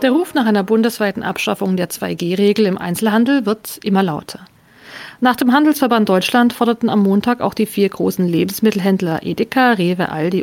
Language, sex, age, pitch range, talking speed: German, female, 50-69, 200-245 Hz, 160 wpm